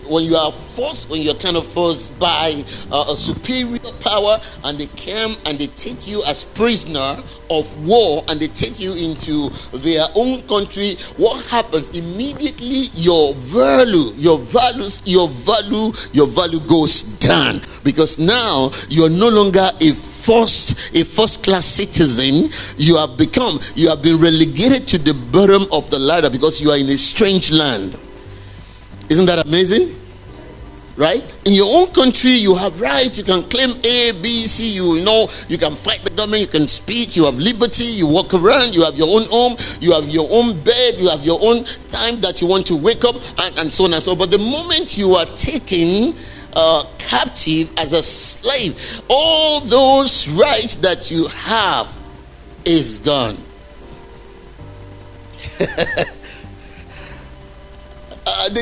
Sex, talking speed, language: male, 160 wpm, English